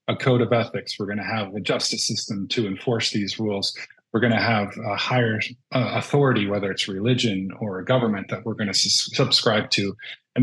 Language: English